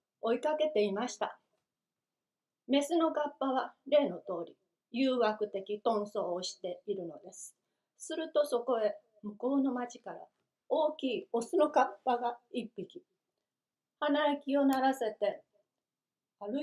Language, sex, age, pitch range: Japanese, female, 40-59, 215-295 Hz